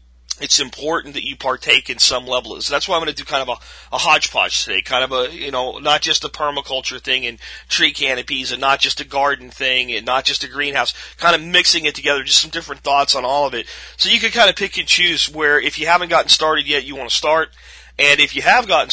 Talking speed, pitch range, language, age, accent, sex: 265 wpm, 125-160 Hz, English, 40-59, American, male